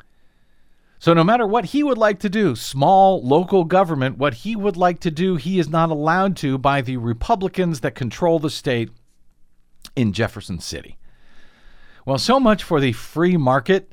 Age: 50-69